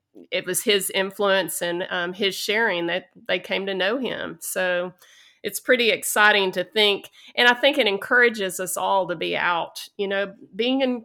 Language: English